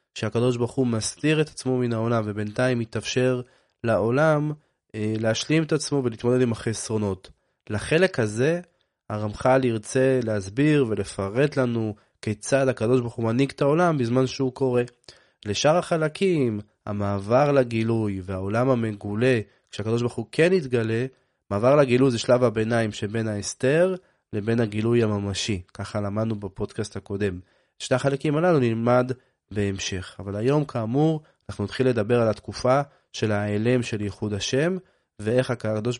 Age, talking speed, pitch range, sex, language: 20-39, 135 wpm, 105-135 Hz, male, Hebrew